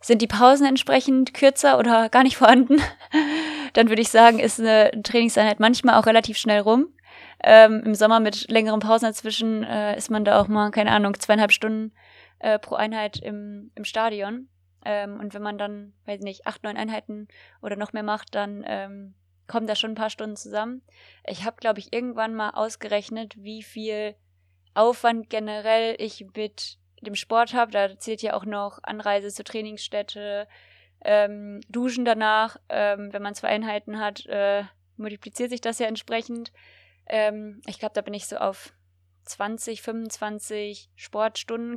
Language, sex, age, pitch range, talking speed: German, female, 20-39, 205-225 Hz, 170 wpm